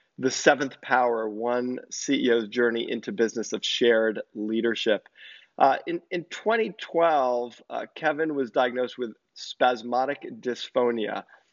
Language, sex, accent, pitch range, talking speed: English, male, American, 115-140 Hz, 115 wpm